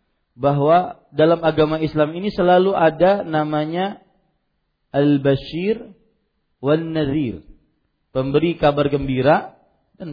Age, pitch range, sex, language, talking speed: 40-59, 135-160 Hz, male, Malay, 85 wpm